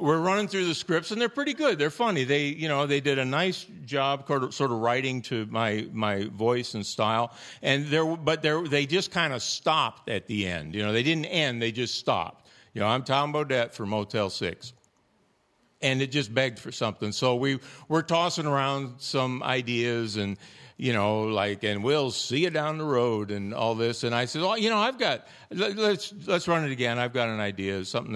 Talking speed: 220 wpm